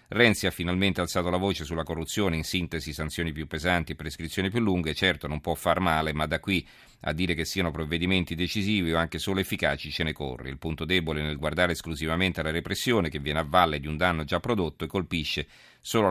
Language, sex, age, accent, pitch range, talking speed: Italian, male, 40-59, native, 80-95 Hz, 215 wpm